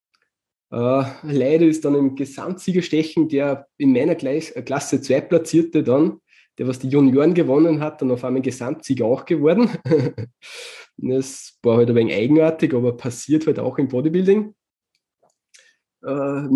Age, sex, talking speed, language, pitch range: 20-39, male, 140 wpm, German, 125-165 Hz